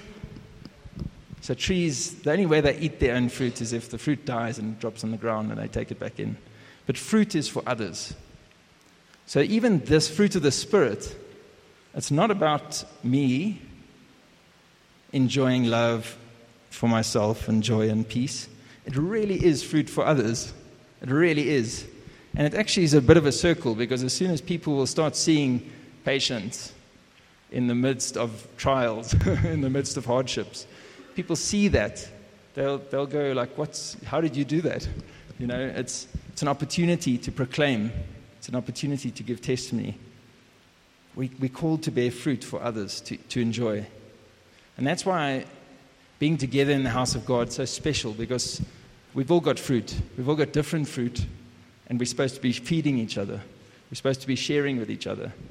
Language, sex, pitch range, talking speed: English, male, 115-150 Hz, 175 wpm